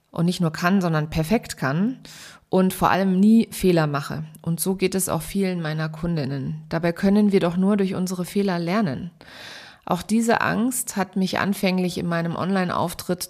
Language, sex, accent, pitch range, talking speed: German, female, German, 170-200 Hz, 175 wpm